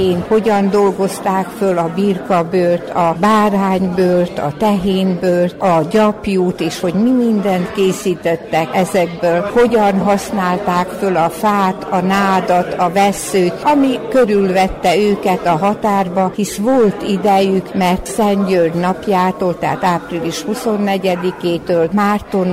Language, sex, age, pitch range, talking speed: Hungarian, female, 60-79, 175-200 Hz, 110 wpm